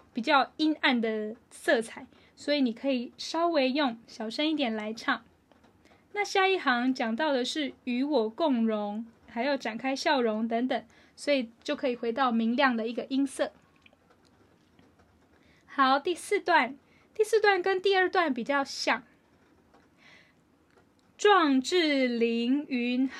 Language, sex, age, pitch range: Chinese, female, 10-29, 240-315 Hz